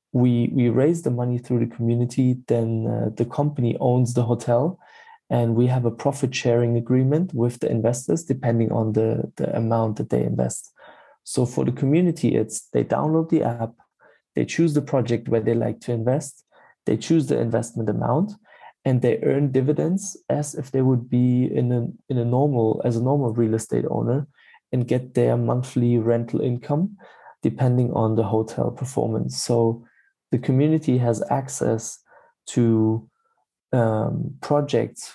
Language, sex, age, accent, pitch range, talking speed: English, male, 20-39, German, 115-140 Hz, 160 wpm